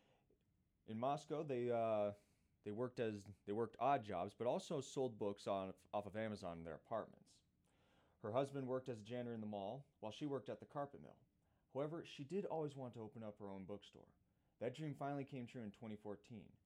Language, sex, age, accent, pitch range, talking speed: English, male, 30-49, American, 95-130 Hz, 200 wpm